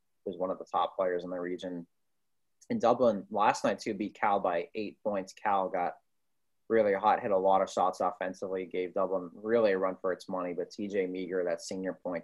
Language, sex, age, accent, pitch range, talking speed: English, male, 30-49, American, 90-105 Hz, 210 wpm